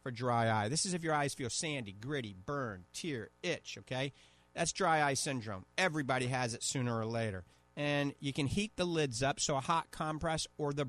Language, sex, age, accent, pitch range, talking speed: English, male, 40-59, American, 120-150 Hz, 210 wpm